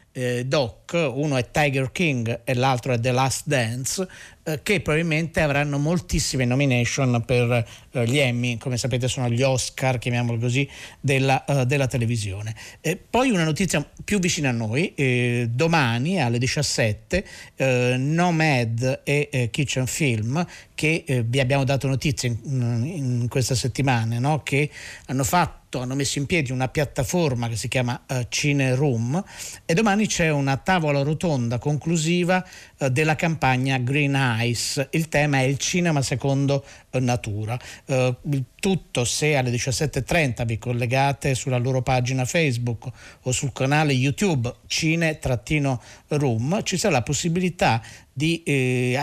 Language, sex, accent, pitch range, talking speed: Italian, male, native, 125-150 Hz, 145 wpm